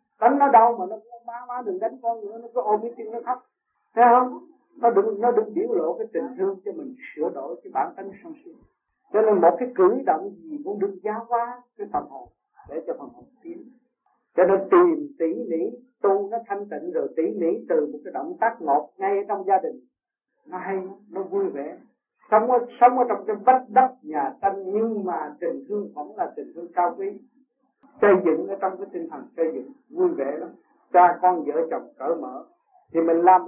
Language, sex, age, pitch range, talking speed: Vietnamese, male, 60-79, 195-315 Hz, 225 wpm